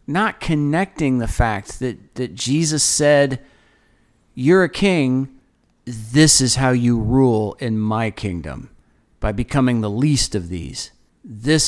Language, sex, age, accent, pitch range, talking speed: English, male, 40-59, American, 125-170 Hz, 135 wpm